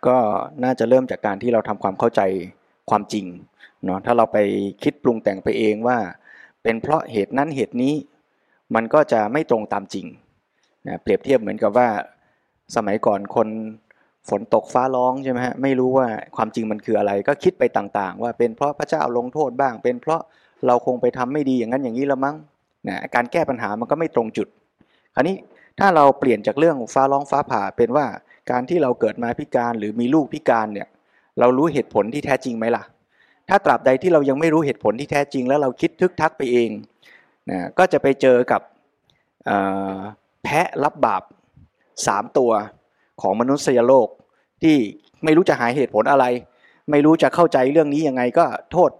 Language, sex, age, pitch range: Thai, male, 20-39, 115-150 Hz